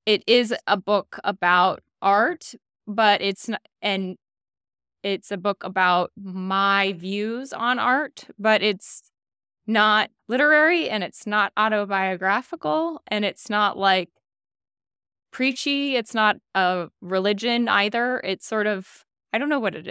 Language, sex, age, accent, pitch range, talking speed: English, female, 20-39, American, 185-220 Hz, 135 wpm